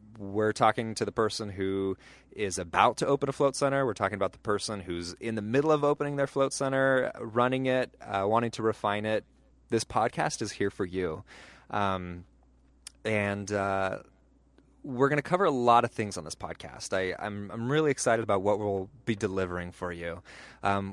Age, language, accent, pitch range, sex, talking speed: 20-39, English, American, 100-130 Hz, male, 190 wpm